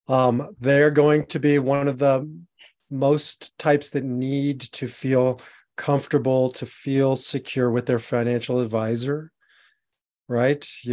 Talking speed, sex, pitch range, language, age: 130 wpm, male, 120-145 Hz, English, 30-49